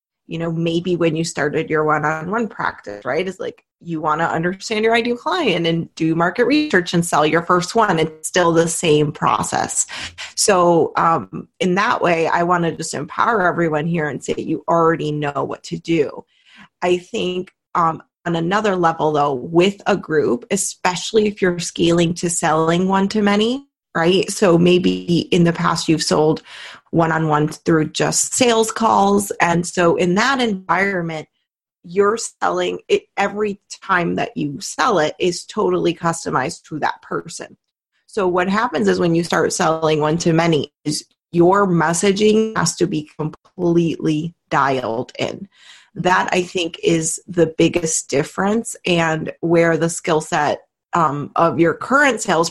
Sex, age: female, 30-49